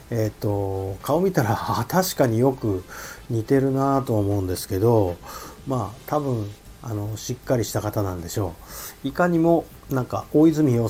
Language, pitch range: Japanese, 100-135 Hz